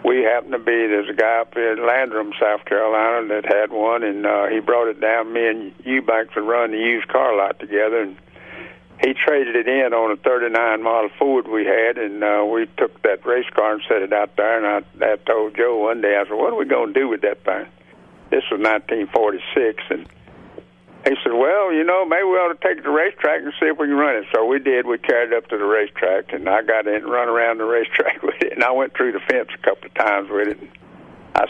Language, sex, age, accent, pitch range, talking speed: English, male, 60-79, American, 105-120 Hz, 250 wpm